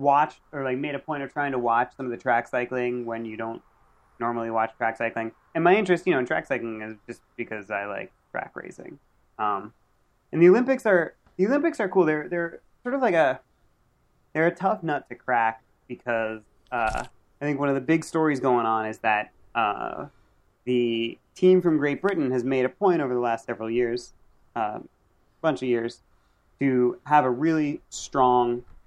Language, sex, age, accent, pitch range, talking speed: English, male, 30-49, American, 115-150 Hz, 200 wpm